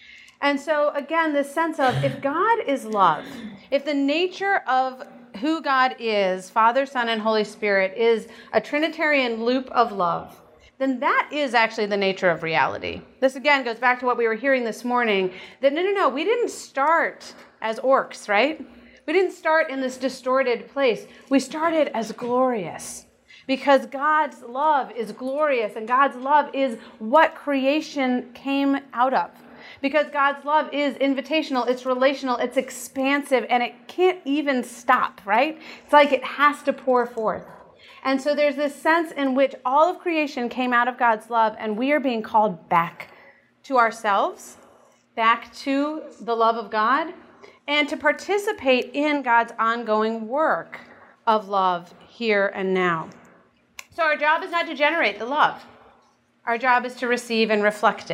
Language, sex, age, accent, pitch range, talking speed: English, female, 40-59, American, 230-290 Hz, 165 wpm